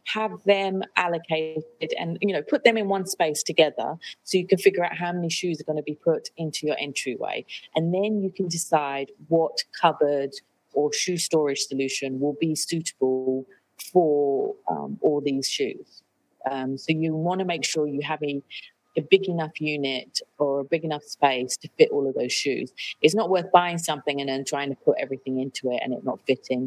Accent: British